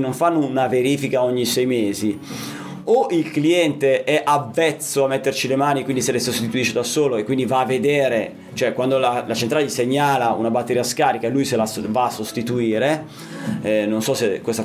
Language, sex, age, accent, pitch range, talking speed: Italian, male, 30-49, native, 120-155 Hz, 200 wpm